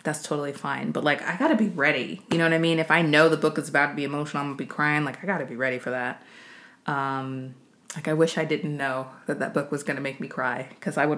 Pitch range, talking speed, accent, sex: 140-185 Hz, 285 wpm, American, female